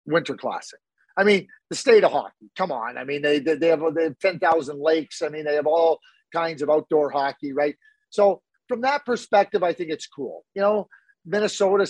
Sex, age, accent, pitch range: male, 40-59, American, 160-235 Hz